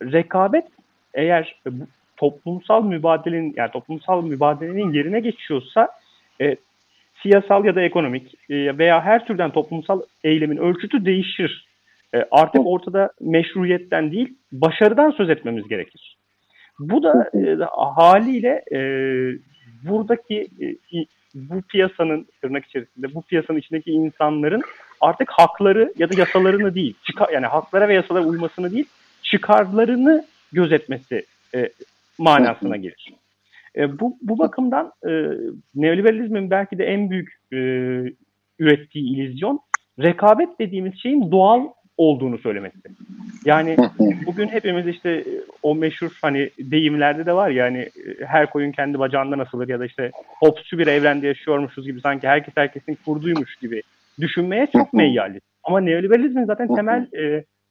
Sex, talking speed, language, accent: male, 125 wpm, Turkish, native